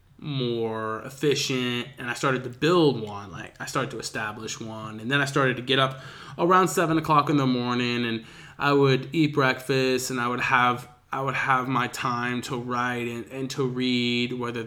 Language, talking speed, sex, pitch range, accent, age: English, 195 wpm, male, 115-140 Hz, American, 20-39